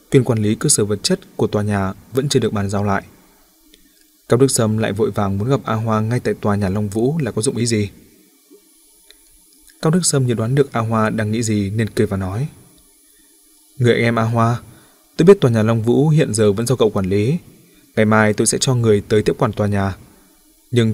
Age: 20-39